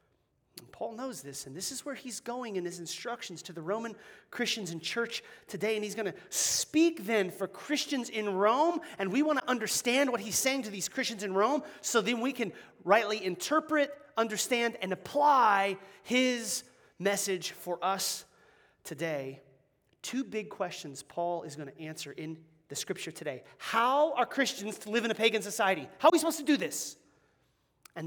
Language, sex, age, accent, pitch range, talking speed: English, male, 30-49, American, 170-245 Hz, 180 wpm